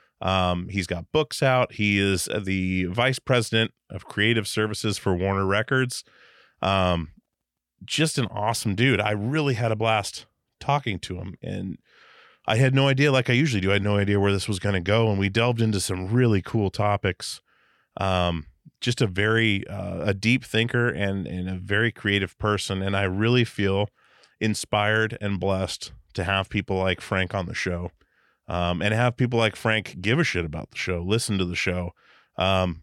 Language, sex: English, male